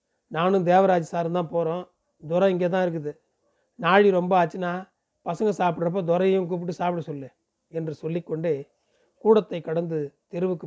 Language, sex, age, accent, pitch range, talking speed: Tamil, male, 30-49, native, 155-190 Hz, 125 wpm